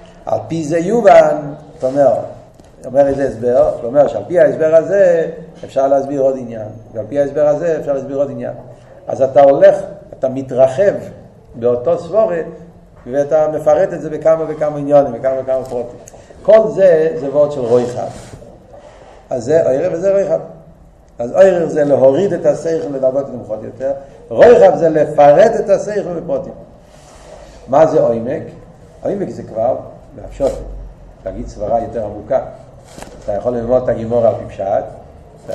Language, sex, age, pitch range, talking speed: Hebrew, male, 50-69, 130-165 Hz, 115 wpm